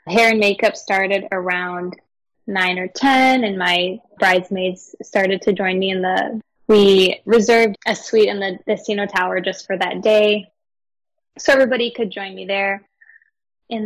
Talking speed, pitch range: 160 wpm, 190-235 Hz